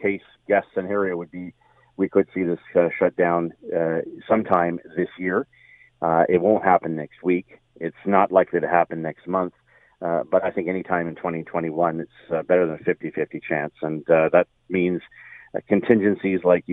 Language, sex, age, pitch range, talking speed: English, male, 40-59, 85-95 Hz, 180 wpm